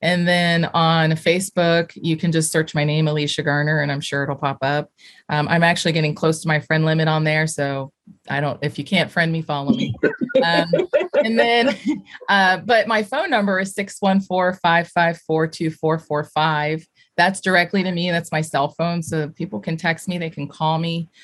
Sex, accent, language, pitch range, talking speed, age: female, American, English, 155-175 Hz, 185 wpm, 30-49